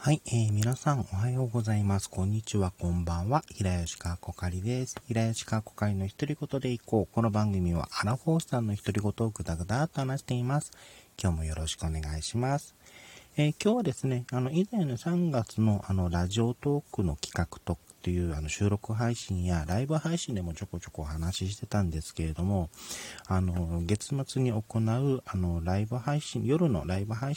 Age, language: 40-59, Japanese